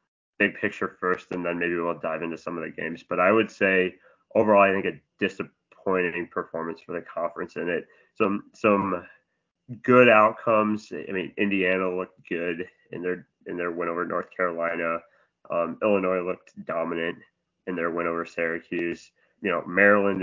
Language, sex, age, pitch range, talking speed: English, male, 20-39, 85-100 Hz, 170 wpm